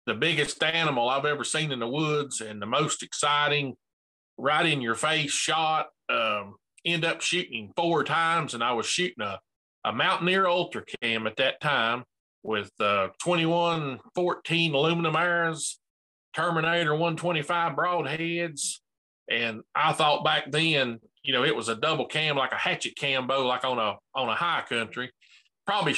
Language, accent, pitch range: English, American, 135-170 Hz